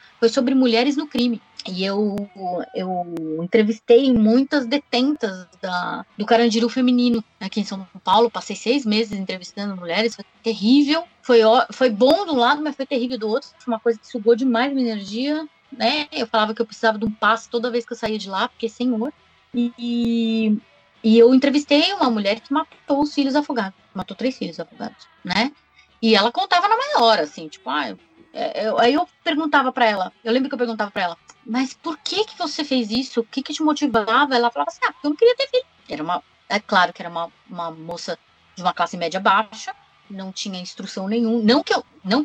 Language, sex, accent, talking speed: Portuguese, female, Brazilian, 210 wpm